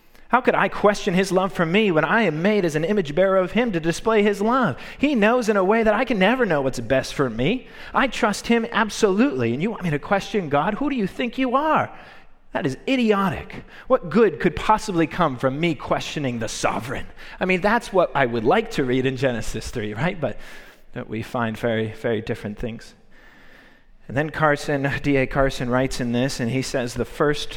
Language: English